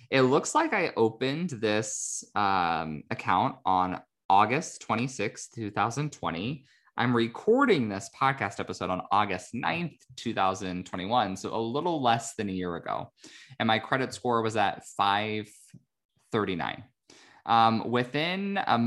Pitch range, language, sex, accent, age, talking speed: 95-125 Hz, English, male, American, 20-39, 125 wpm